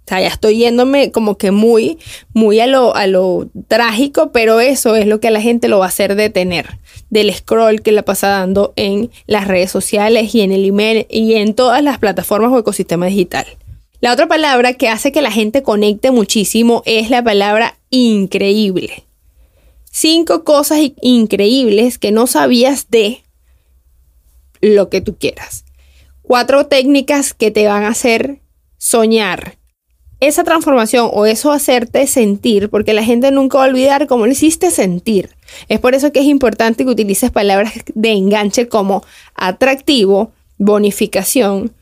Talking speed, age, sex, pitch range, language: 160 wpm, 20-39, female, 200-255 Hz, Spanish